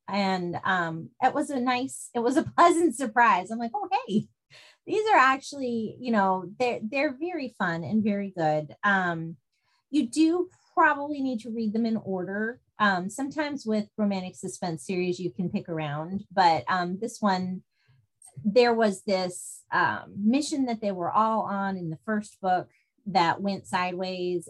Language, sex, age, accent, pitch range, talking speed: English, female, 30-49, American, 165-230 Hz, 165 wpm